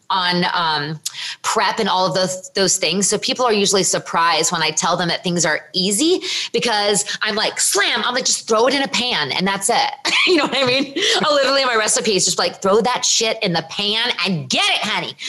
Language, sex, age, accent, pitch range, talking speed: English, female, 30-49, American, 180-230 Hz, 230 wpm